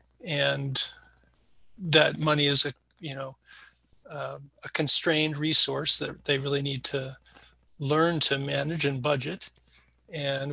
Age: 40-59